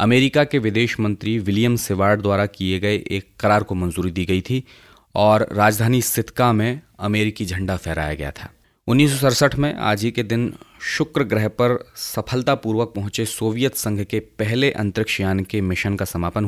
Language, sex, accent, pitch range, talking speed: Hindi, male, native, 95-115 Hz, 170 wpm